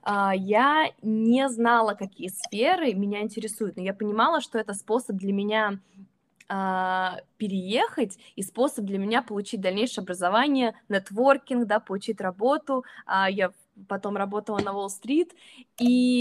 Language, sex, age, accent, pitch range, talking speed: Russian, female, 20-39, native, 195-240 Hz, 135 wpm